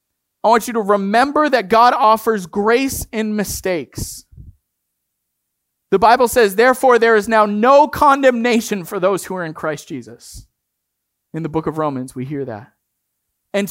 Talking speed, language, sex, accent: 160 wpm, English, male, American